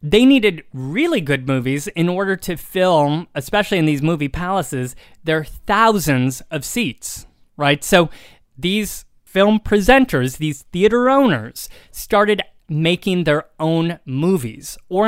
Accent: American